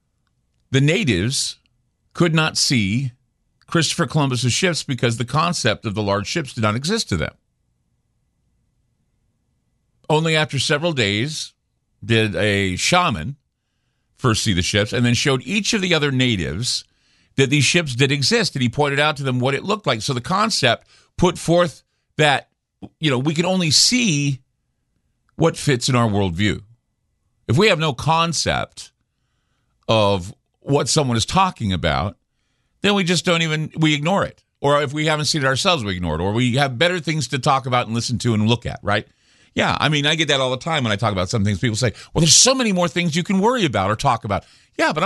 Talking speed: 195 wpm